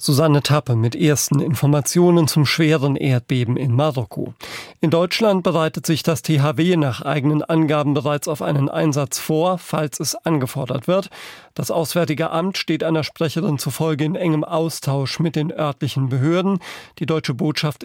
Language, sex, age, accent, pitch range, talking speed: German, male, 40-59, German, 145-175 Hz, 150 wpm